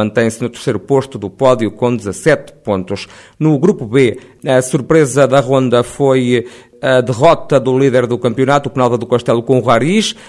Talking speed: 175 wpm